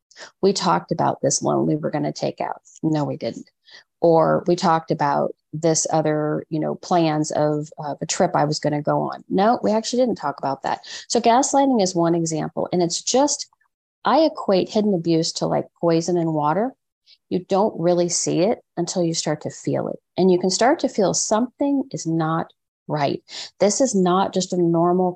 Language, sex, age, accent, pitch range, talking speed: English, female, 40-59, American, 160-200 Hz, 200 wpm